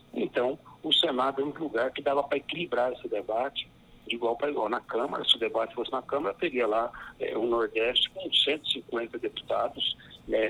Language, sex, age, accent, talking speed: Portuguese, male, 50-69, Brazilian, 190 wpm